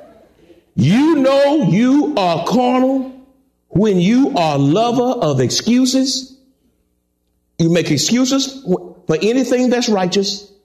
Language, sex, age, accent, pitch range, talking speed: English, male, 50-69, American, 175-260 Hz, 105 wpm